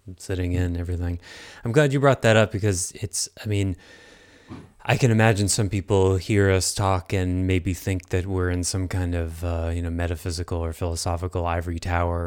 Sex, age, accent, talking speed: male, 30-49, American, 185 wpm